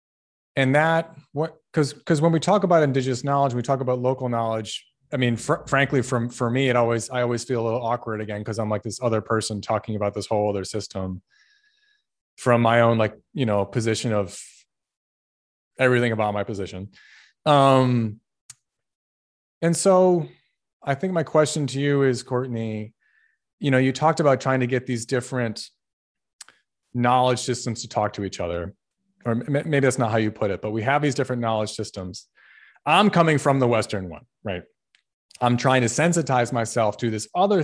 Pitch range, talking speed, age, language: 110-145 Hz, 180 wpm, 30-49, English